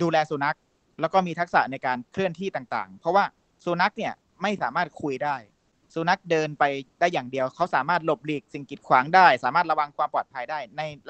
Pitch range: 145-190 Hz